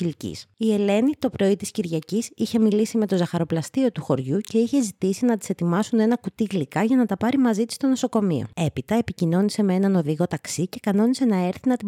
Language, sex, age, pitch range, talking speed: Greek, female, 20-39, 165-220 Hz, 210 wpm